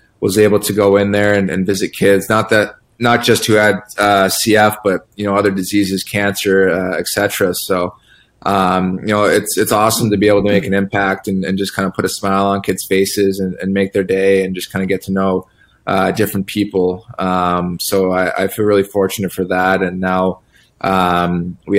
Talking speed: 220 wpm